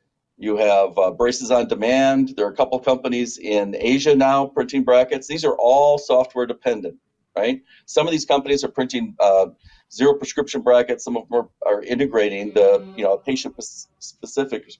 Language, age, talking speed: English, 50-69, 170 wpm